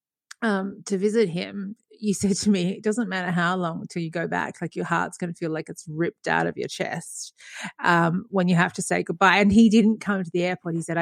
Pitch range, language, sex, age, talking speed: 185-235 Hz, English, female, 30-49, 250 wpm